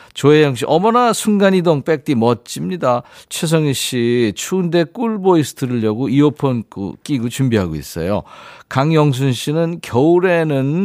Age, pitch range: 50-69, 115-170 Hz